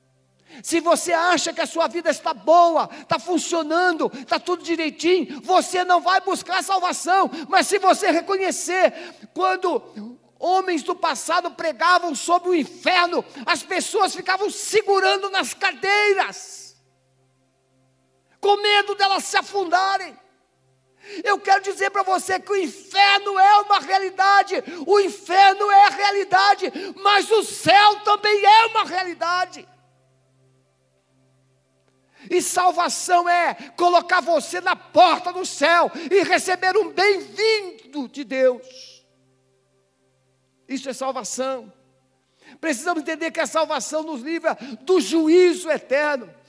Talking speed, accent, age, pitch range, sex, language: 120 wpm, Brazilian, 50-69, 265-375 Hz, male, Portuguese